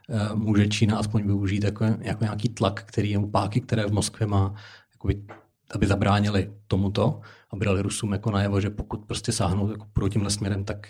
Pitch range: 105-115 Hz